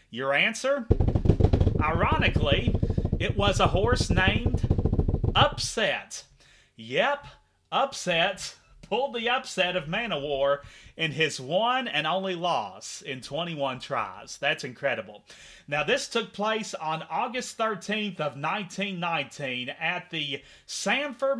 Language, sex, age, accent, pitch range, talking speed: English, male, 30-49, American, 130-175 Hz, 115 wpm